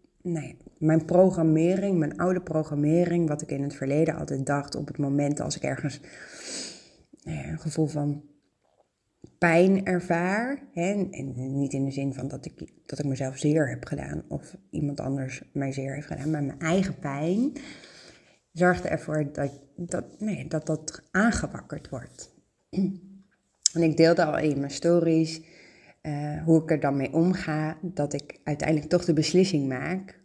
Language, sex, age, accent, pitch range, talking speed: Dutch, female, 30-49, Dutch, 145-175 Hz, 155 wpm